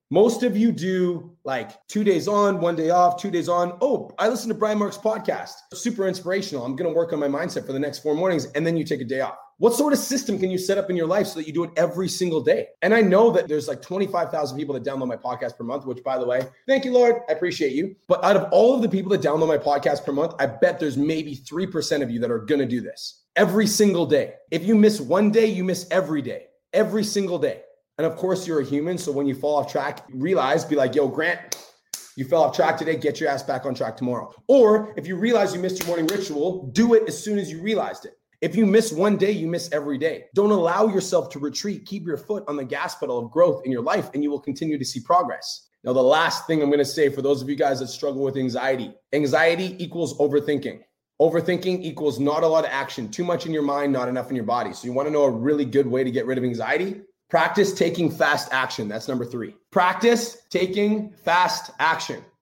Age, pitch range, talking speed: 30-49, 140-200 Hz, 255 wpm